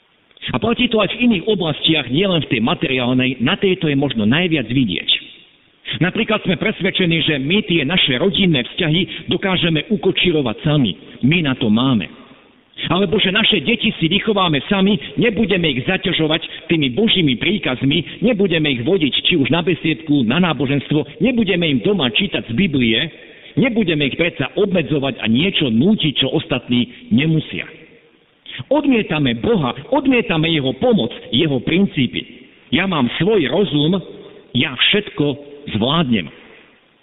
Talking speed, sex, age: 140 wpm, male, 50-69